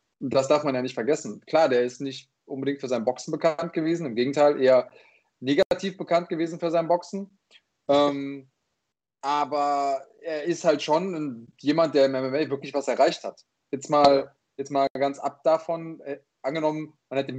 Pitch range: 130-155 Hz